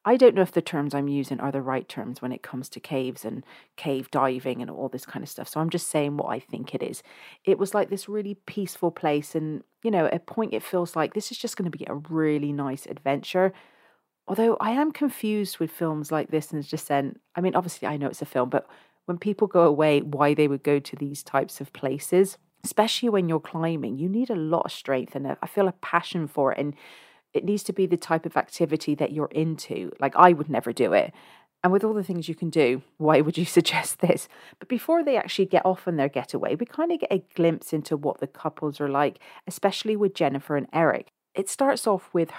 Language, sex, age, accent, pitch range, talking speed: English, female, 40-59, British, 145-190 Hz, 245 wpm